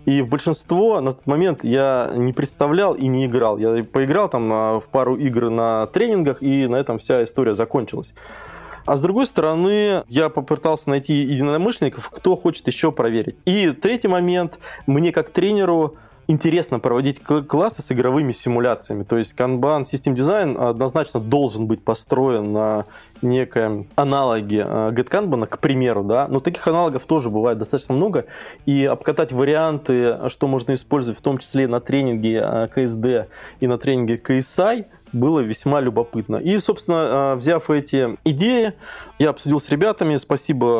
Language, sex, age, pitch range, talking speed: Russian, male, 20-39, 120-160 Hz, 150 wpm